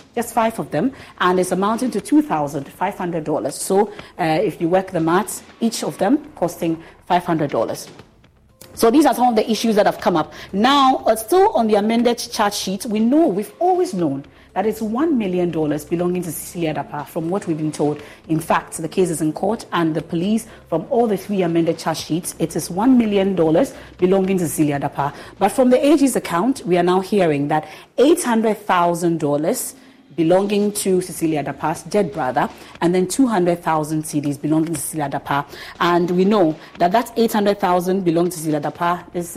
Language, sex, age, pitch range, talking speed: English, female, 40-59, 160-205 Hz, 180 wpm